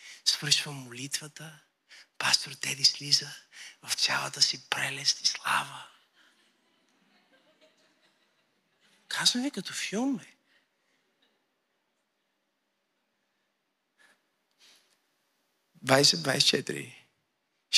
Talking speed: 50 wpm